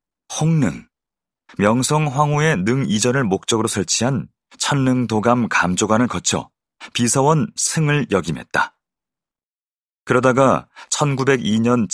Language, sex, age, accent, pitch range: Korean, male, 40-59, native, 110-145 Hz